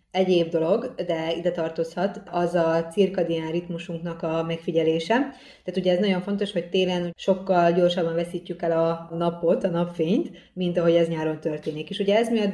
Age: 30-49